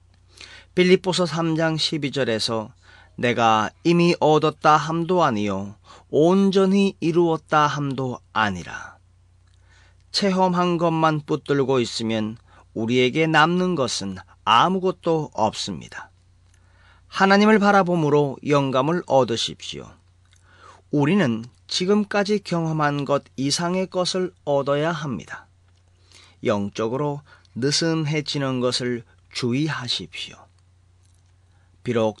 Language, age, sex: Korean, 40-59, male